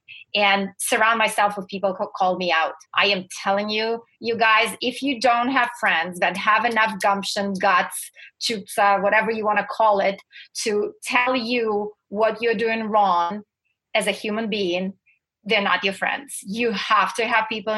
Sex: female